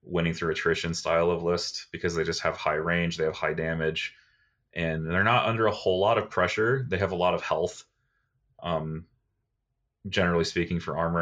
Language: English